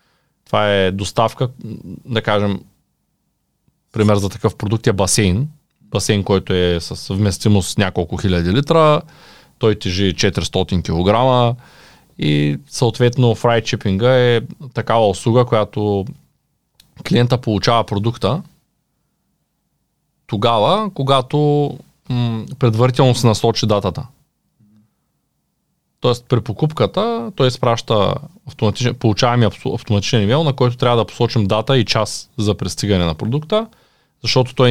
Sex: male